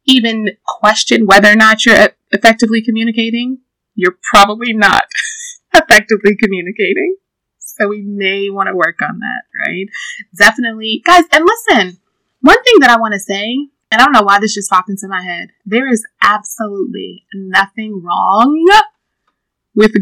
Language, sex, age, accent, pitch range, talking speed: English, female, 20-39, American, 195-235 Hz, 150 wpm